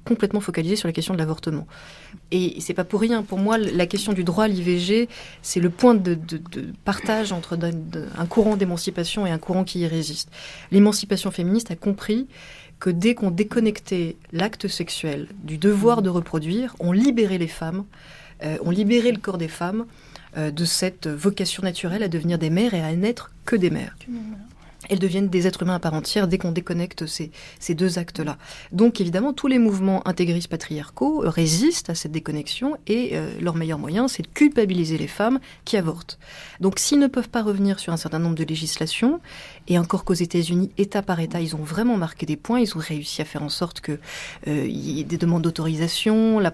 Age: 30-49